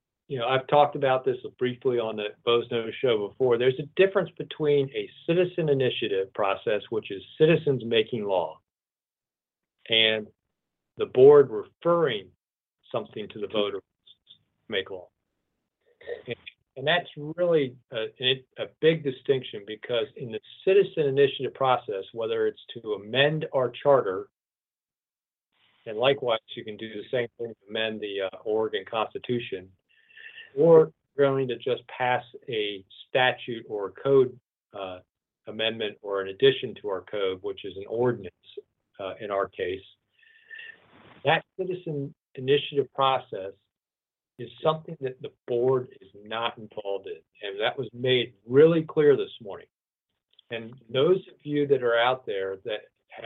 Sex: male